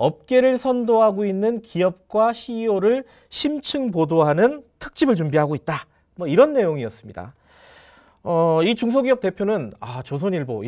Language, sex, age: Korean, male, 40-59